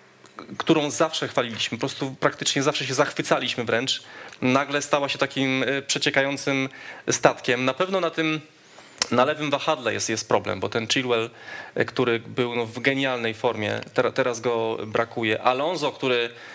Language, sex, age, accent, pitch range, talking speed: Polish, male, 20-39, native, 115-140 Hz, 140 wpm